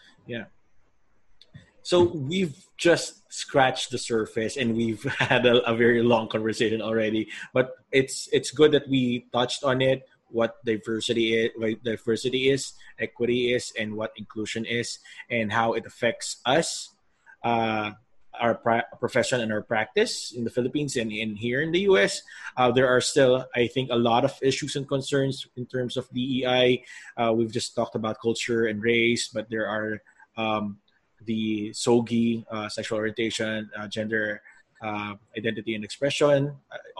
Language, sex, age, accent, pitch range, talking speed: English, male, 20-39, Filipino, 110-130 Hz, 160 wpm